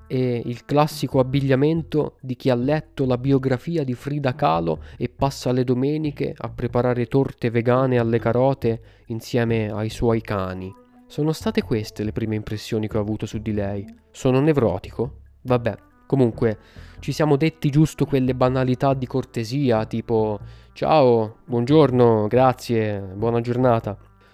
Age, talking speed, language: 20-39, 140 wpm, Italian